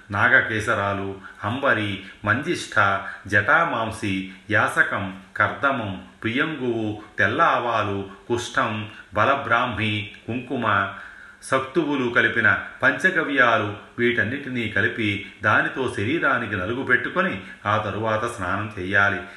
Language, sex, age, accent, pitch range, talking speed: Telugu, male, 30-49, native, 100-115 Hz, 70 wpm